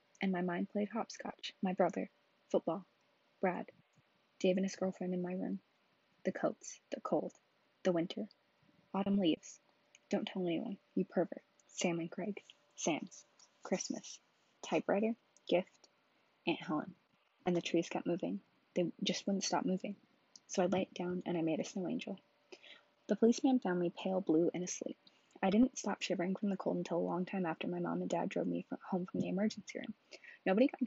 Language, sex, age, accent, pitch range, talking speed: English, female, 20-39, American, 170-205 Hz, 180 wpm